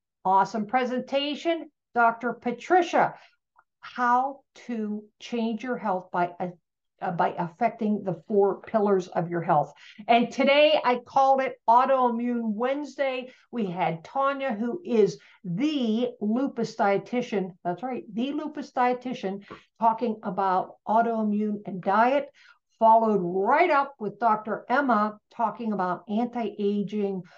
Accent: American